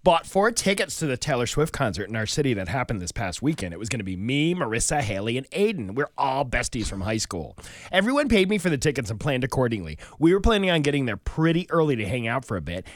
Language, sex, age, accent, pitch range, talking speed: English, male, 30-49, American, 115-165 Hz, 255 wpm